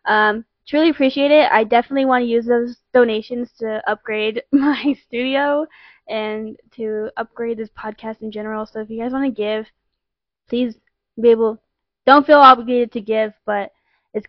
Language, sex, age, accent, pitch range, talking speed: English, female, 10-29, American, 220-250 Hz, 165 wpm